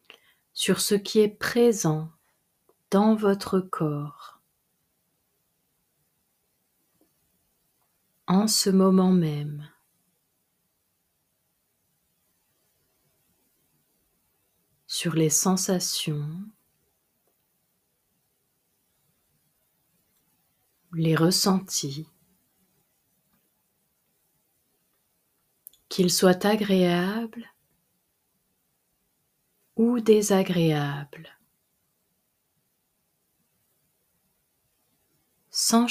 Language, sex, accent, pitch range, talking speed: French, female, French, 165-205 Hz, 40 wpm